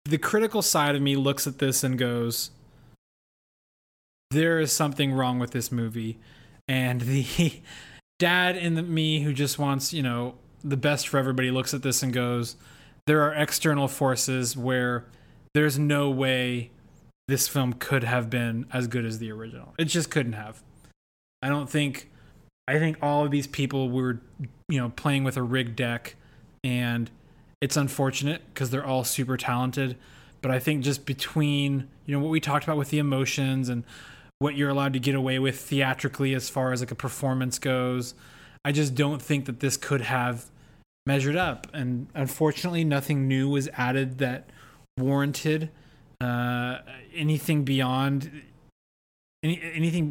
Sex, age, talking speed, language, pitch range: male, 20-39, 165 wpm, English, 130-150 Hz